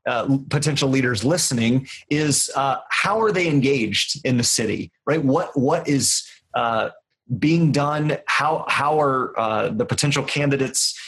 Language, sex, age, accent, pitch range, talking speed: English, male, 30-49, American, 120-155 Hz, 145 wpm